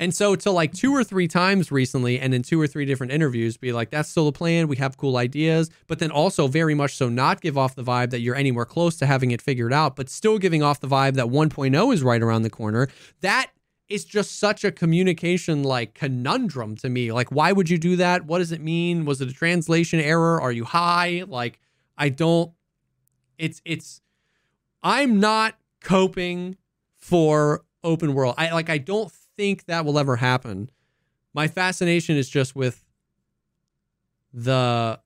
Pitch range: 130-170 Hz